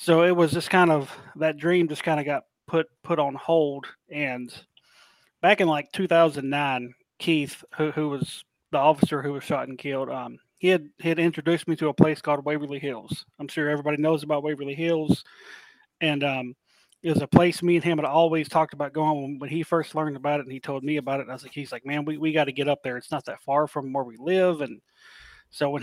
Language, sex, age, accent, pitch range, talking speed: English, male, 30-49, American, 140-160 Hz, 240 wpm